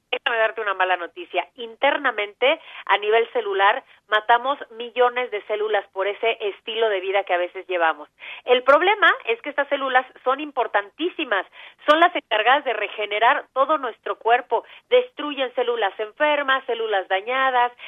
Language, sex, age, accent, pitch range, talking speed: Spanish, female, 40-59, Mexican, 205-275 Hz, 145 wpm